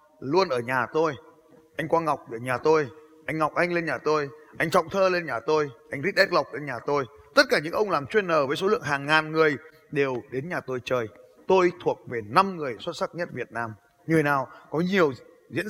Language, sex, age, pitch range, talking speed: Vietnamese, male, 20-39, 140-185 Hz, 230 wpm